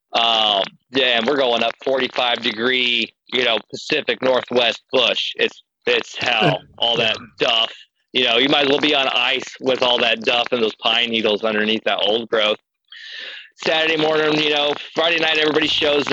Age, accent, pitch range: 20-39, American, 120-140 Hz